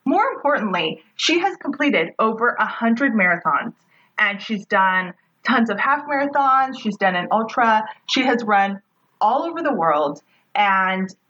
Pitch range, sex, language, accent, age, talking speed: 190-240 Hz, female, English, American, 30-49, 145 wpm